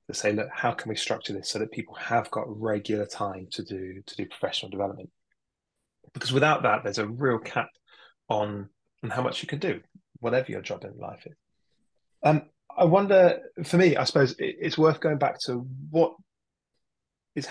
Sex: male